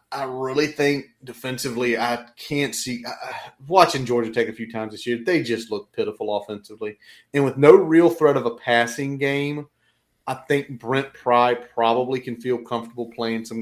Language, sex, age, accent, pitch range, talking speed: English, male, 30-49, American, 115-135 Hz, 170 wpm